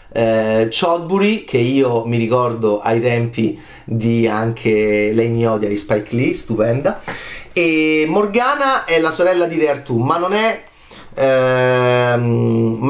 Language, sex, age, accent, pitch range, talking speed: Italian, male, 30-49, native, 120-185 Hz, 130 wpm